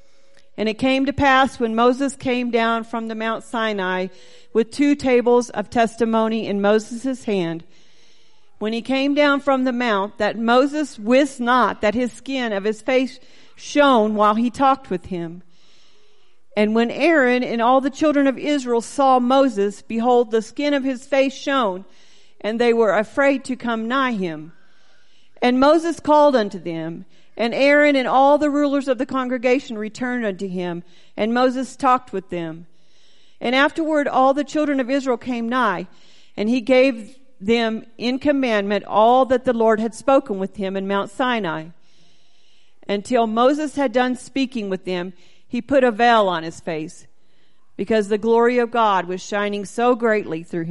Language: English